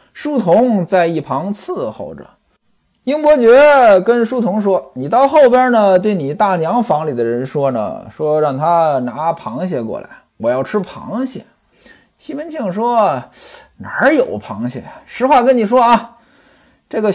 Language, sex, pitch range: Chinese, male, 155-250 Hz